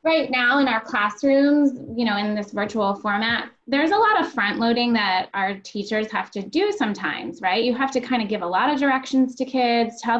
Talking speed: 225 wpm